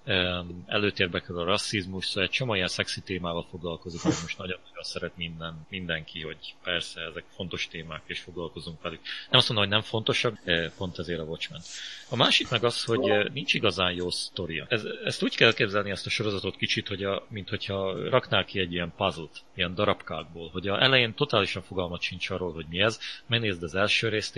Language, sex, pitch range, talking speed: Hungarian, male, 90-110 Hz, 190 wpm